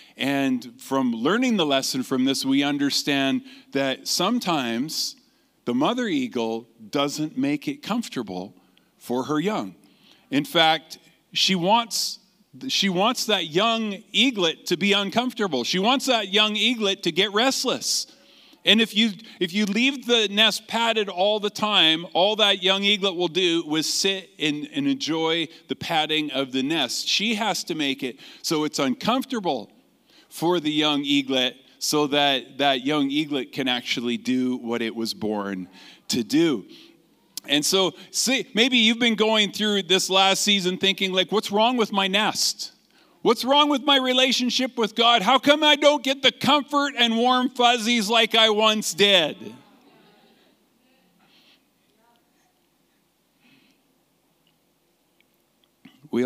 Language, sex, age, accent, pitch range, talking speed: English, male, 50-69, American, 145-235 Hz, 145 wpm